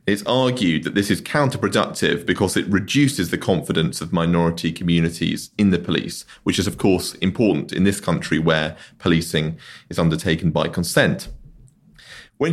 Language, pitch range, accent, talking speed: English, 85-120 Hz, British, 155 wpm